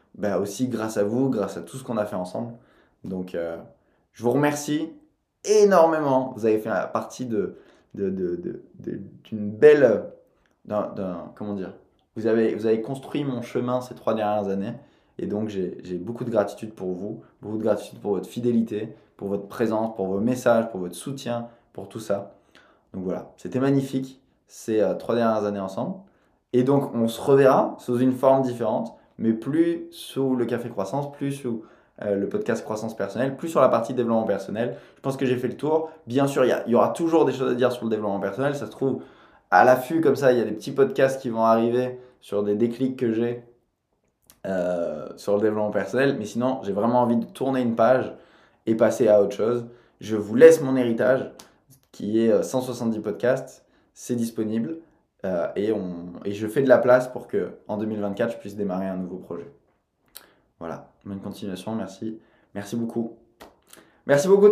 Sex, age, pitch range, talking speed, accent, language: male, 20-39, 105-130 Hz, 195 wpm, French, French